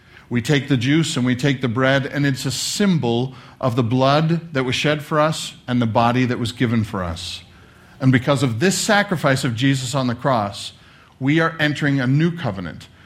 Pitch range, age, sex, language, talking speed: 120-150 Hz, 50-69, male, English, 205 wpm